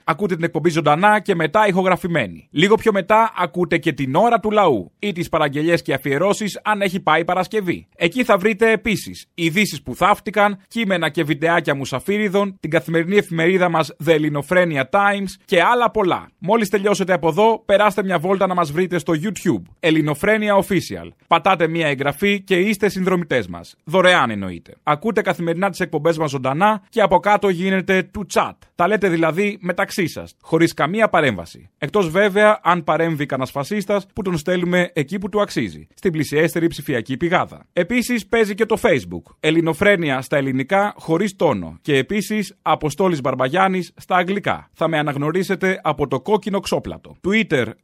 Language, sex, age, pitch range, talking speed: Greek, male, 30-49, 160-205 Hz, 165 wpm